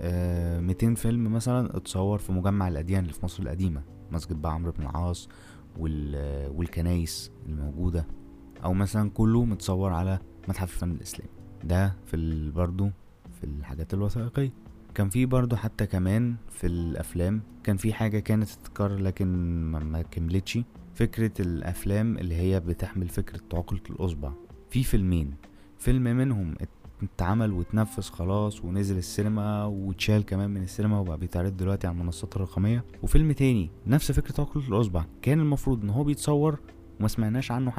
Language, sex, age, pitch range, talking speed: Arabic, male, 20-39, 85-110 Hz, 140 wpm